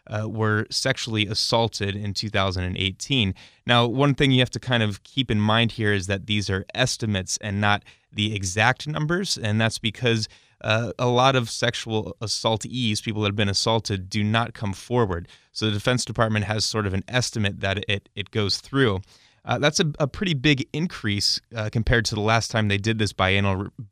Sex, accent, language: male, American, English